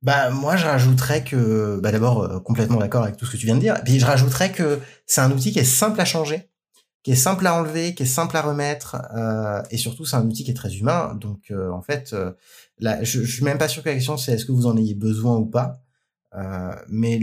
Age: 20-39